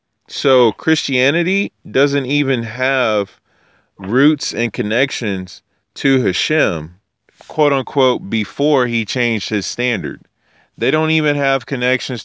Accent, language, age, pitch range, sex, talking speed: American, English, 30-49, 110-135 Hz, male, 110 wpm